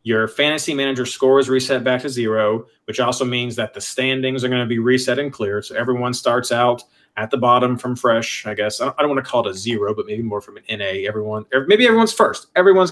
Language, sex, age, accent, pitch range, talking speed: English, male, 40-59, American, 115-140 Hz, 245 wpm